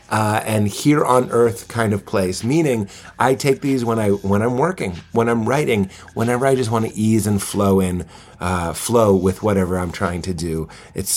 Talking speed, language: 205 wpm, English